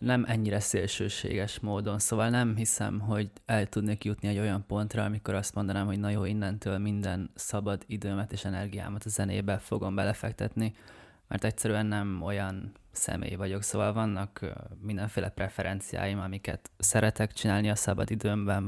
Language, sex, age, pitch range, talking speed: Hungarian, male, 20-39, 100-110 Hz, 150 wpm